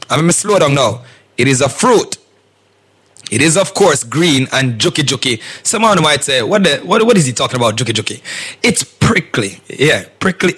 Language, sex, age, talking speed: English, male, 30-49, 195 wpm